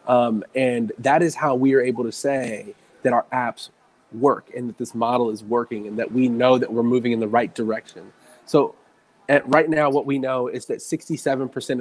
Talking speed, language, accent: 210 wpm, English, American